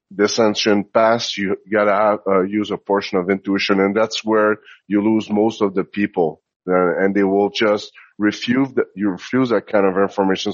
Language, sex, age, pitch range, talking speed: English, male, 30-49, 100-110 Hz, 190 wpm